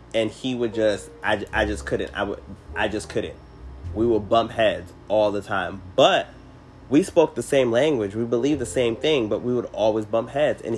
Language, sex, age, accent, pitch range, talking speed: English, male, 20-39, American, 90-115 Hz, 210 wpm